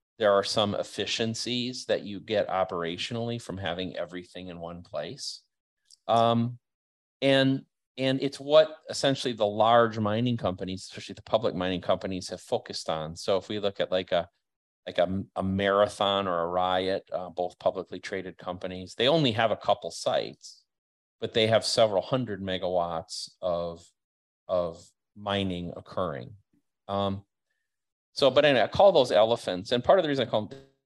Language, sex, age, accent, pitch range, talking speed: English, male, 40-59, American, 90-115 Hz, 160 wpm